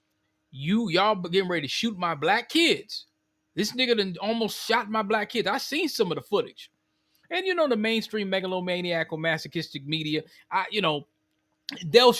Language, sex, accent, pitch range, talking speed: English, male, American, 160-220 Hz, 165 wpm